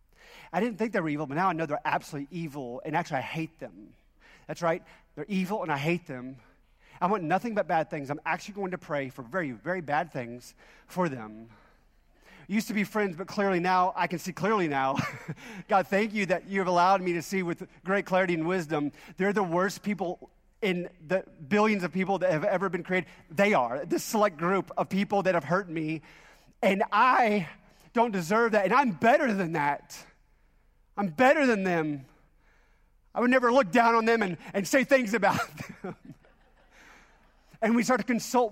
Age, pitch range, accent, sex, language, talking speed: 30-49, 160-215 Hz, American, male, English, 200 wpm